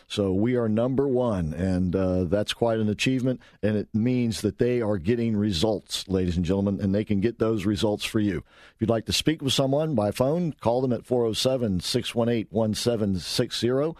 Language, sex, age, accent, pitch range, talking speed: English, male, 50-69, American, 105-120 Hz, 185 wpm